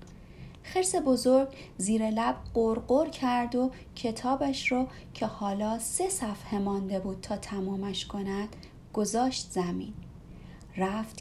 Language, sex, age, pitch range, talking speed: Persian, female, 30-49, 225-310 Hz, 110 wpm